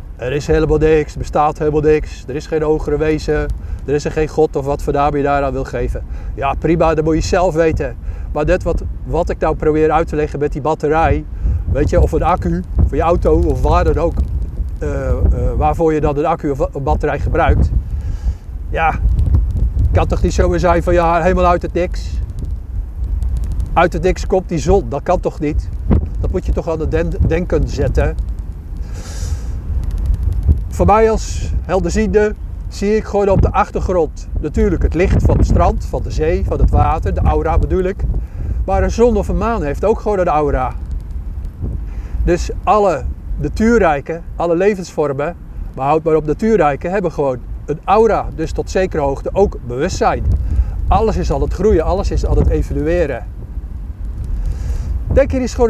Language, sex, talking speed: Dutch, male, 185 wpm